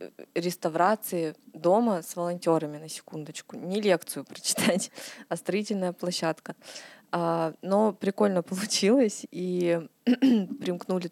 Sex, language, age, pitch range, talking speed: female, Russian, 20-39, 165-190 Hz, 90 wpm